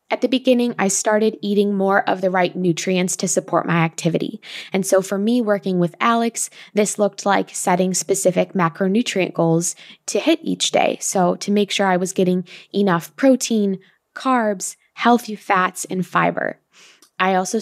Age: 20-39